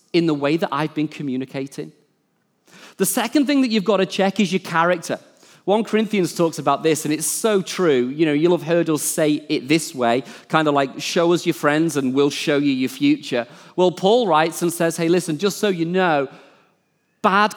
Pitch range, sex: 160-220 Hz, male